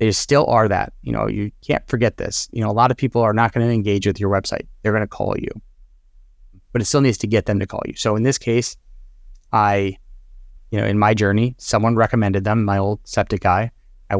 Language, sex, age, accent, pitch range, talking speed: English, male, 30-49, American, 95-115 Hz, 240 wpm